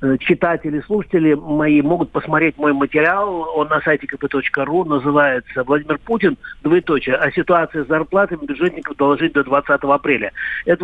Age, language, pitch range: 50-69, Russian, 135-170 Hz